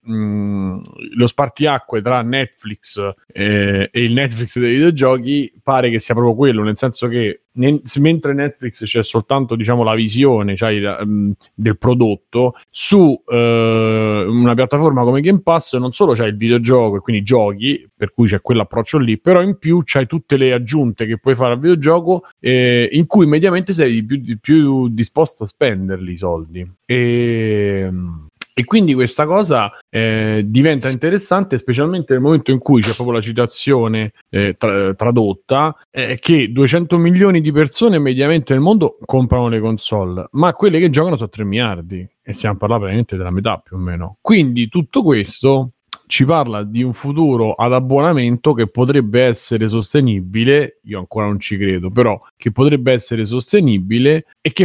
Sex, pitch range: male, 110-140 Hz